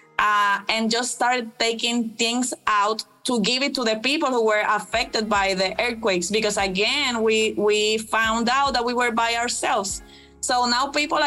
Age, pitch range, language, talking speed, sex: 20-39, 195-240 Hz, English, 175 wpm, female